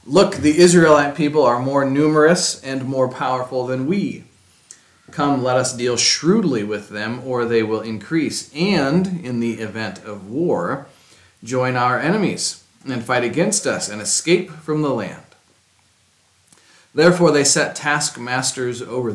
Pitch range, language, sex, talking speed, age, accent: 110-150 Hz, English, male, 145 wpm, 40-59, American